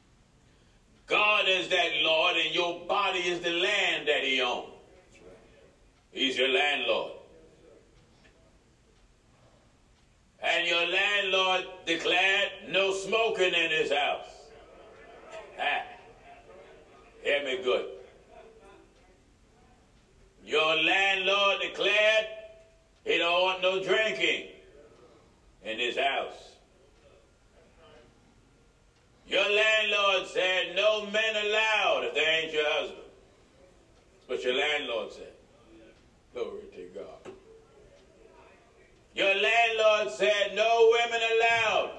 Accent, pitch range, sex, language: American, 175-220 Hz, male, English